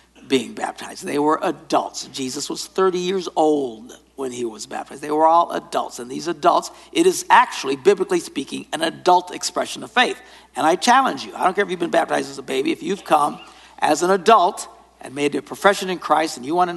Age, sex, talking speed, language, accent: 60-79, male, 220 wpm, English, American